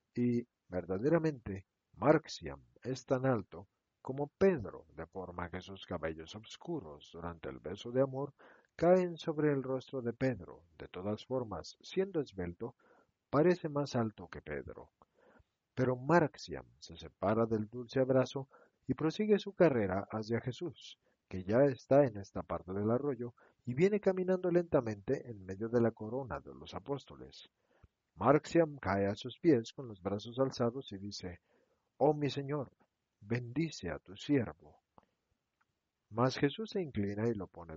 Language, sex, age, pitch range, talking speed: Spanish, male, 50-69, 100-145 Hz, 150 wpm